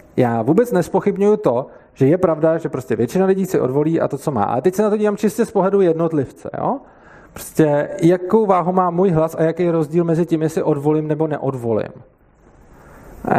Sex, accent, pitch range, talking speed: male, native, 140-180 Hz, 200 wpm